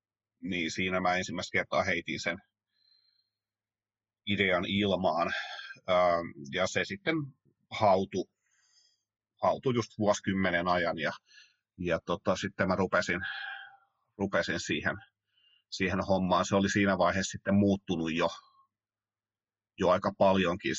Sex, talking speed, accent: male, 105 wpm, native